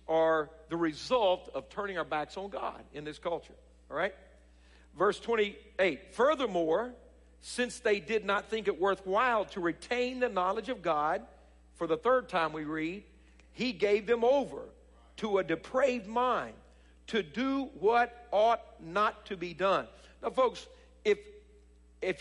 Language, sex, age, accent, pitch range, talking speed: English, male, 50-69, American, 160-230 Hz, 150 wpm